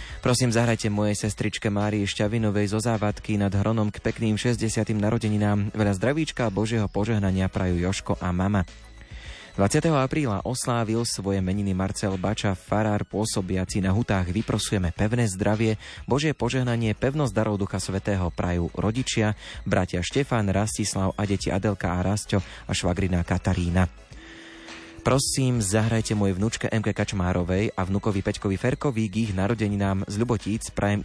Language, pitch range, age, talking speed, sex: Slovak, 95-110 Hz, 20-39, 135 wpm, male